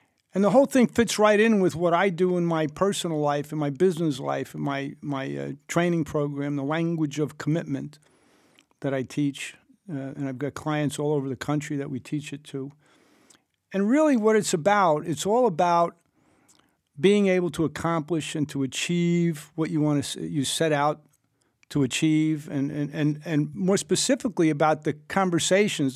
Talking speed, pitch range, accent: 185 wpm, 140-175 Hz, American